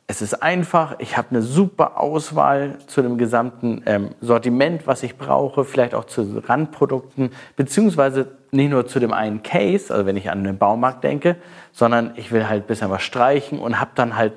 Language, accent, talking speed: German, German, 190 wpm